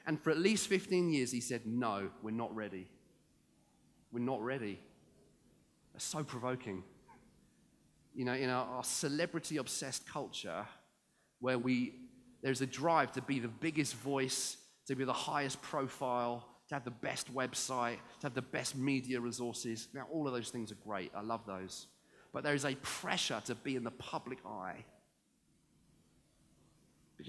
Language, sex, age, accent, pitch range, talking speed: English, male, 30-49, British, 115-145 Hz, 160 wpm